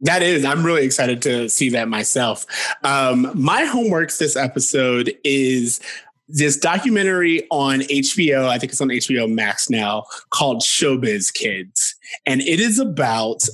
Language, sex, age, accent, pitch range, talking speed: English, male, 20-39, American, 125-165 Hz, 145 wpm